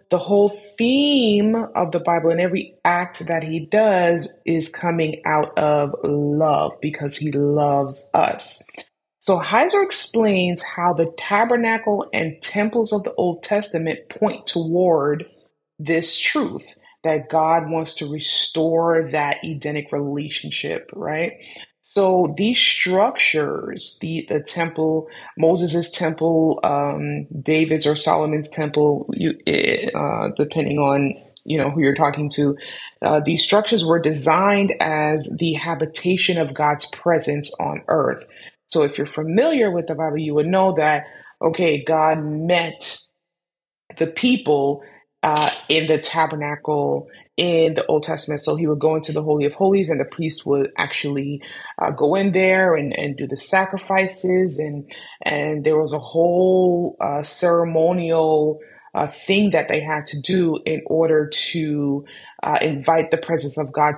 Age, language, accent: 20-39, English, American